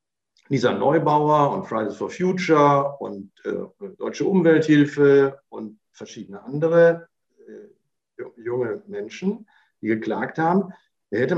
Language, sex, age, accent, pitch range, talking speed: German, male, 60-79, German, 120-170 Hz, 105 wpm